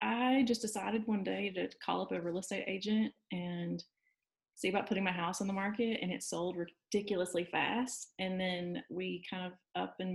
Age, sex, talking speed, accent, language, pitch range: 20-39, female, 195 wpm, American, English, 180-225 Hz